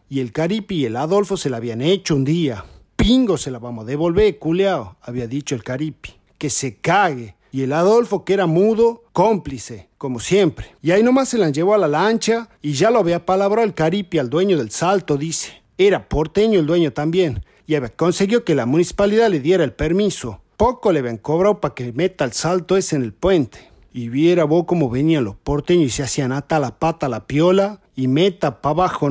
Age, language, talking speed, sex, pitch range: 50-69, Spanish, 215 wpm, male, 140-195 Hz